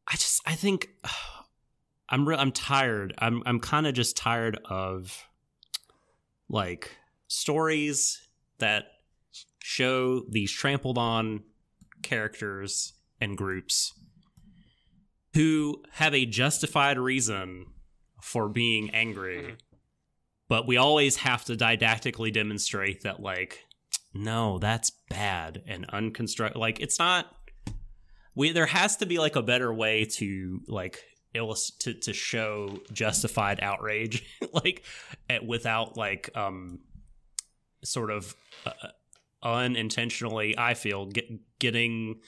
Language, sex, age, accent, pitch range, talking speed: English, male, 30-49, American, 105-125 Hz, 110 wpm